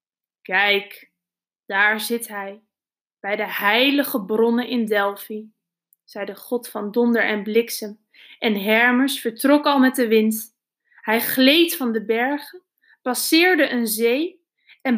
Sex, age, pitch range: female, 20-39, 215-280 Hz